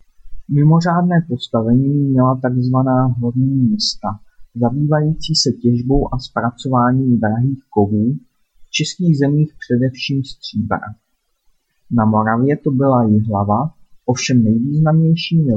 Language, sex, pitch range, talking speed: Czech, male, 120-150 Hz, 100 wpm